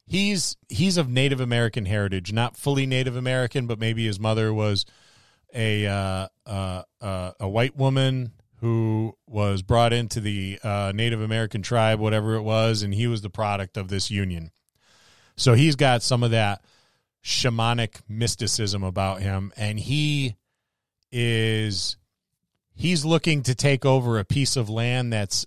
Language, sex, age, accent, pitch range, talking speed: English, male, 30-49, American, 100-120 Hz, 155 wpm